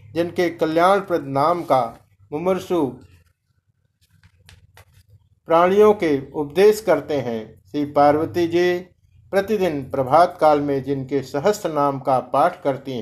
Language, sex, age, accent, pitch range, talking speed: Hindi, male, 50-69, native, 135-165 Hz, 105 wpm